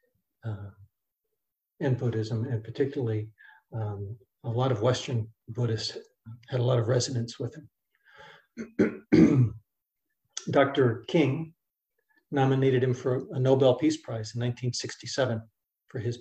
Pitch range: 115-135 Hz